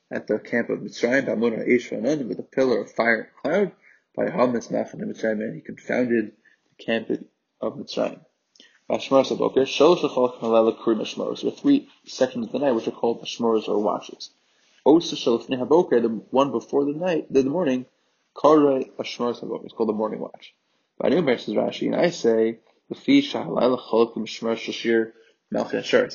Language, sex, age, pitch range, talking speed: English, male, 20-39, 115-140 Hz, 175 wpm